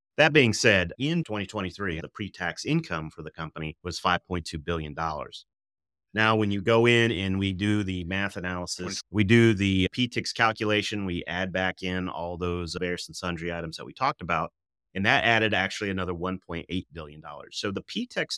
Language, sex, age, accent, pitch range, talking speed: English, male, 30-49, American, 85-105 Hz, 175 wpm